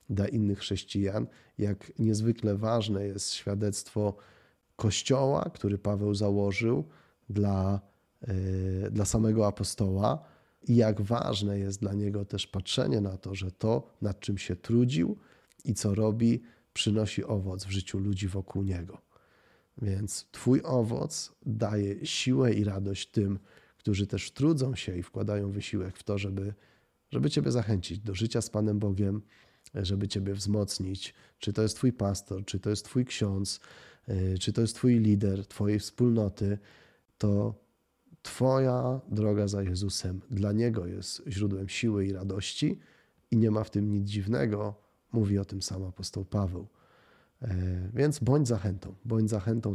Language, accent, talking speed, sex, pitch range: Polish, native, 140 wpm, male, 100-110 Hz